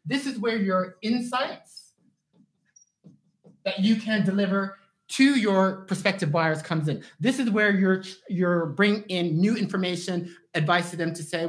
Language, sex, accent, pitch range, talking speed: English, male, American, 160-205 Hz, 150 wpm